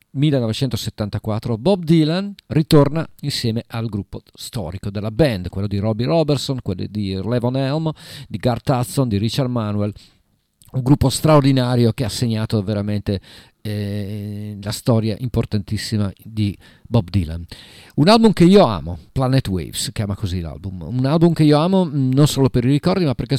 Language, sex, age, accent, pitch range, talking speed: Italian, male, 50-69, native, 105-140 Hz, 155 wpm